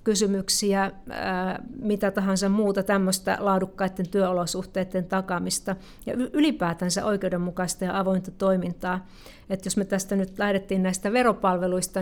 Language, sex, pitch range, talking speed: Finnish, female, 190-230 Hz, 110 wpm